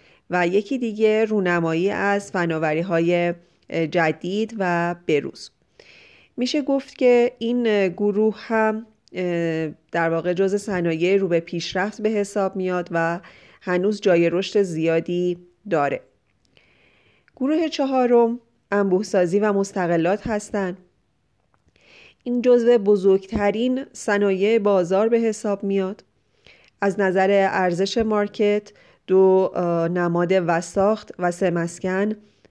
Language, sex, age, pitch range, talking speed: Persian, female, 30-49, 175-215 Hz, 105 wpm